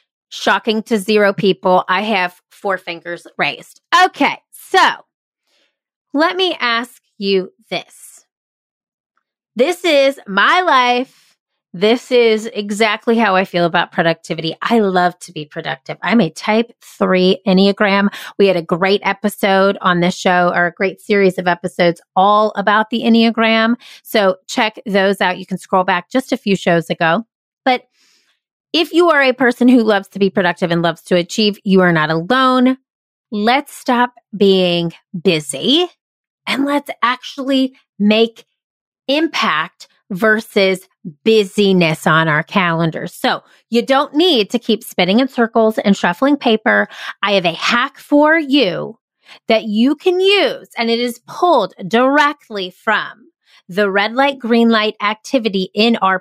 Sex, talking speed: female, 145 wpm